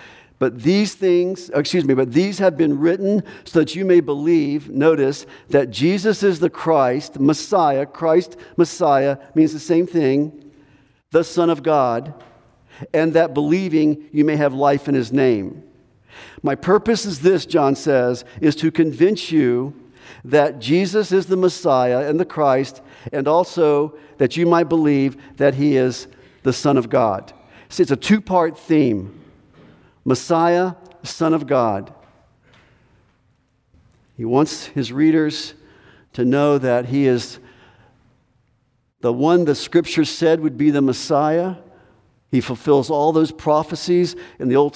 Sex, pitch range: male, 135-170 Hz